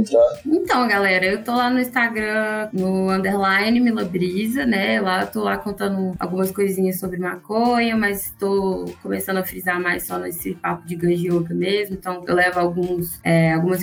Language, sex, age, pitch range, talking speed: Portuguese, female, 20-39, 170-200 Hz, 155 wpm